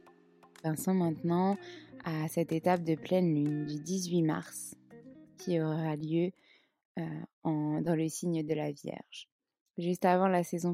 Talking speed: 145 wpm